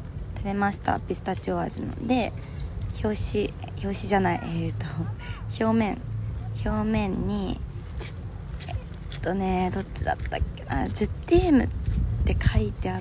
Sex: female